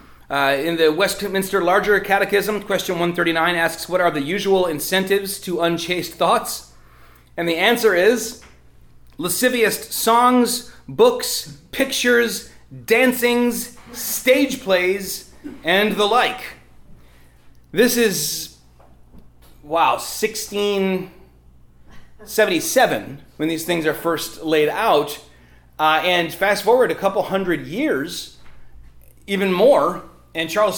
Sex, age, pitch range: male, 30-49, 140-195 Hz